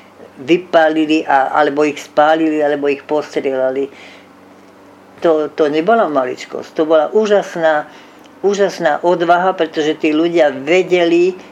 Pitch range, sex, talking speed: 150-185 Hz, female, 110 wpm